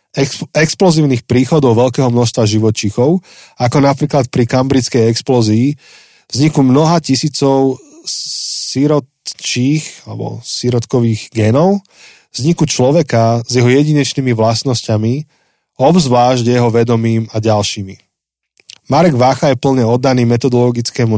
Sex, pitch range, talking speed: male, 115-140 Hz, 95 wpm